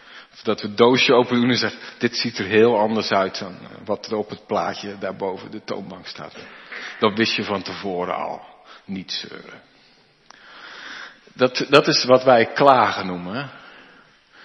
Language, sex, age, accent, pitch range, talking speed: Dutch, male, 50-69, Dutch, 125-185 Hz, 165 wpm